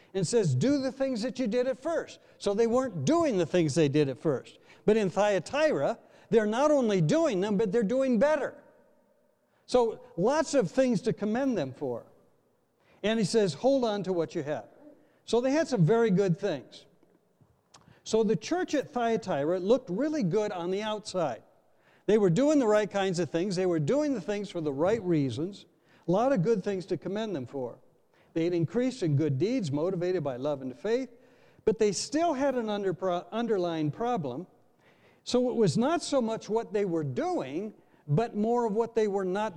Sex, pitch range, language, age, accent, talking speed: male, 165-240 Hz, English, 60-79, American, 195 wpm